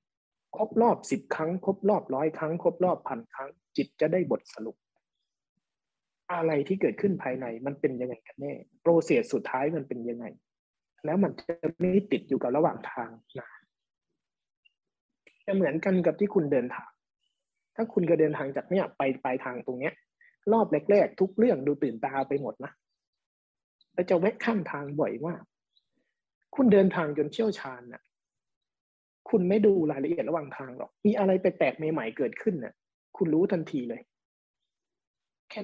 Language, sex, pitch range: Thai, male, 145-205 Hz